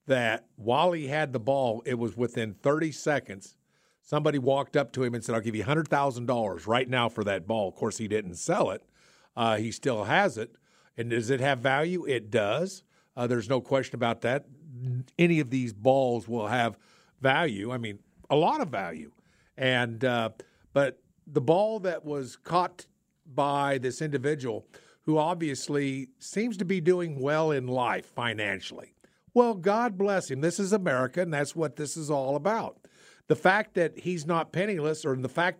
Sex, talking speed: male, 180 wpm